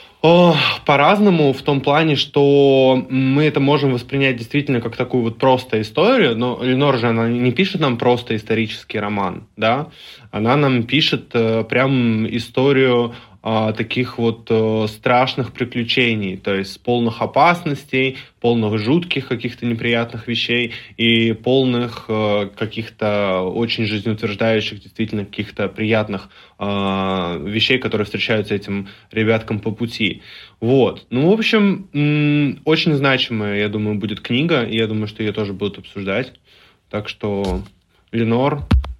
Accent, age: native, 20-39